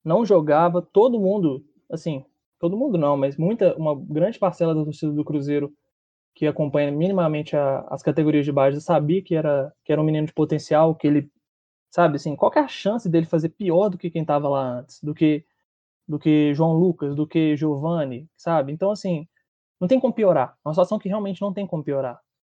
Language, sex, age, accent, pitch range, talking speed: Portuguese, male, 20-39, Brazilian, 150-195 Hz, 195 wpm